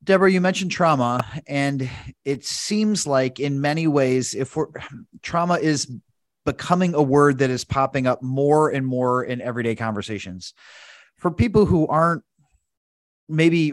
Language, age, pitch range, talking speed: English, 30-49, 125-155 Hz, 145 wpm